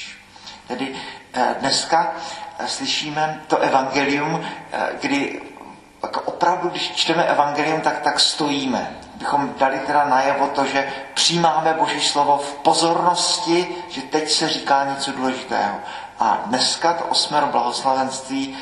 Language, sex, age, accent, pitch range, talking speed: Czech, male, 40-59, native, 135-155 Hz, 115 wpm